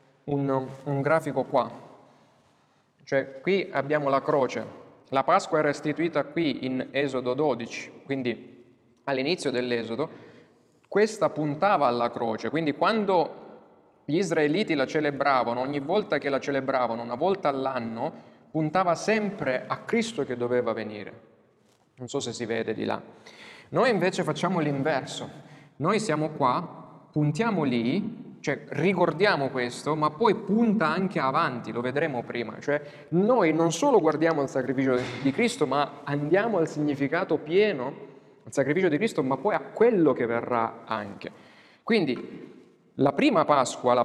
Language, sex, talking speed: Italian, male, 140 wpm